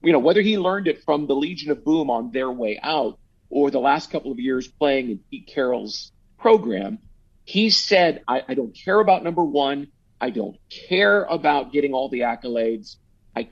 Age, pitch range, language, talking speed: 50-69, 130-170 Hz, English, 195 wpm